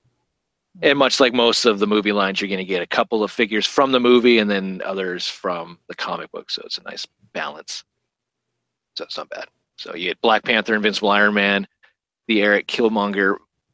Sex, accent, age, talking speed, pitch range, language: male, American, 40-59, 200 wpm, 95-130 Hz, English